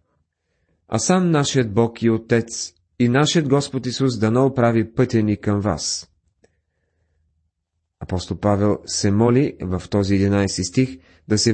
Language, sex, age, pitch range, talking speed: Bulgarian, male, 40-59, 95-135 Hz, 140 wpm